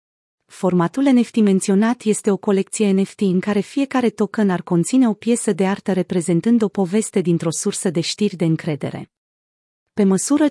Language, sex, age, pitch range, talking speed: Romanian, female, 30-49, 180-225 Hz, 160 wpm